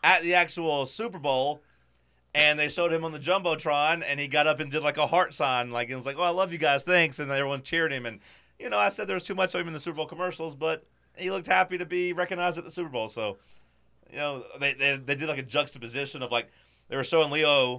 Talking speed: 265 wpm